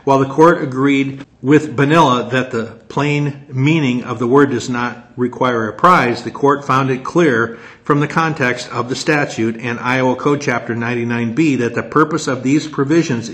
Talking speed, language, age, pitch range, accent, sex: 180 wpm, English, 50-69, 120-140 Hz, American, male